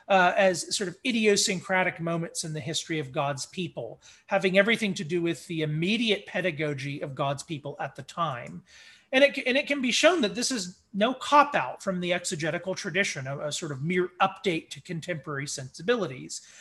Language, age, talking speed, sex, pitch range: English, 30-49, 180 wpm, male, 150-205 Hz